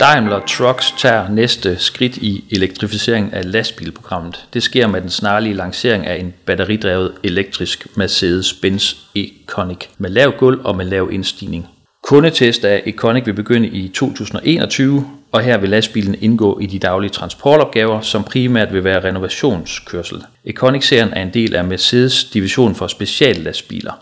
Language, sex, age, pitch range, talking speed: Danish, male, 40-59, 95-125 Hz, 145 wpm